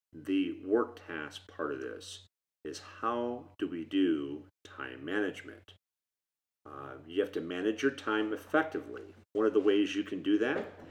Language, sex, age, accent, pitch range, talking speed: English, male, 40-59, American, 90-135 Hz, 160 wpm